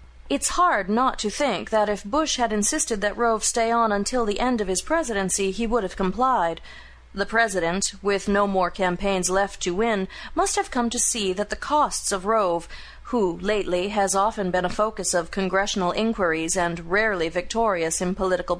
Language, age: English, 40-59